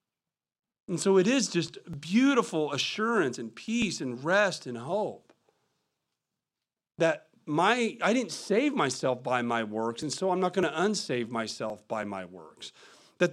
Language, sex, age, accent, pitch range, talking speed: English, male, 40-59, American, 160-210 Hz, 155 wpm